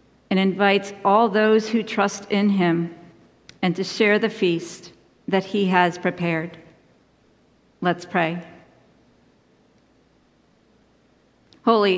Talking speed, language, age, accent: 100 wpm, English, 50-69, American